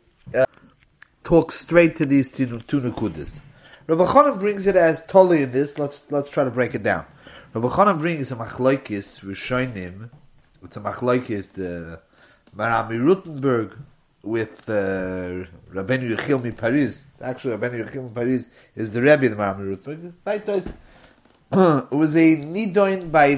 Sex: male